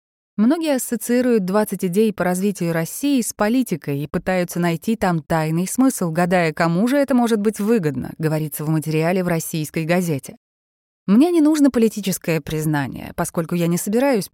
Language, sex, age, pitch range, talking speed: Russian, female, 20-39, 160-215 Hz, 155 wpm